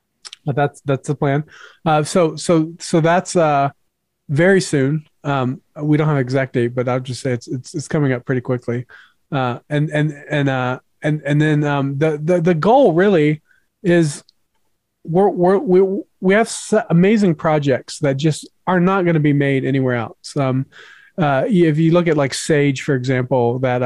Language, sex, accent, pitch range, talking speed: English, male, American, 135-160 Hz, 185 wpm